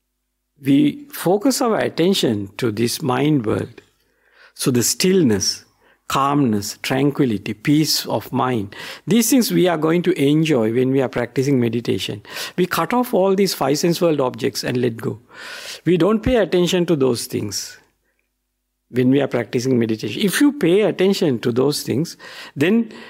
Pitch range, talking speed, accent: 130-180 Hz, 155 wpm, Indian